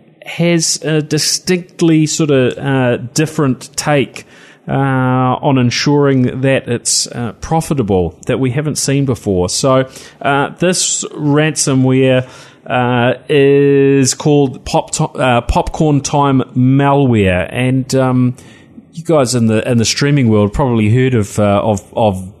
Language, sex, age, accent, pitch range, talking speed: English, male, 30-49, Australian, 110-140 Hz, 130 wpm